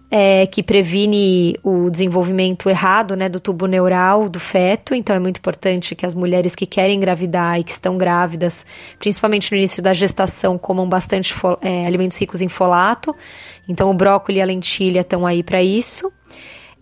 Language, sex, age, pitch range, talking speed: Portuguese, female, 20-39, 185-215 Hz, 165 wpm